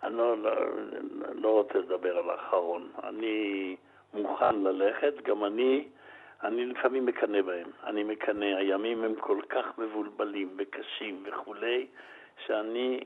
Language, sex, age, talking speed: Hebrew, male, 60-79, 125 wpm